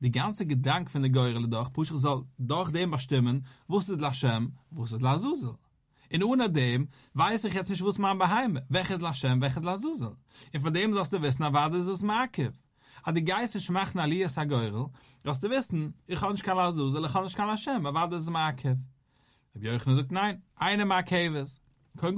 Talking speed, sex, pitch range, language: 210 wpm, male, 130-185 Hz, English